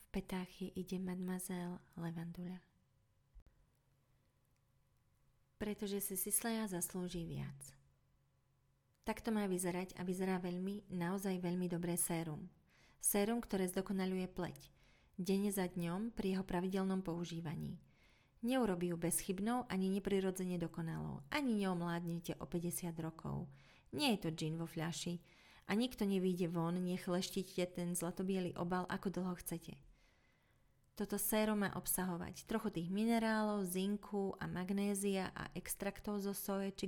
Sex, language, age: female, Slovak, 30-49